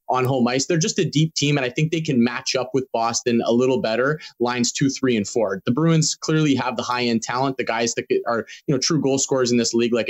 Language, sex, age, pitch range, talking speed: English, male, 20-39, 125-150 Hz, 275 wpm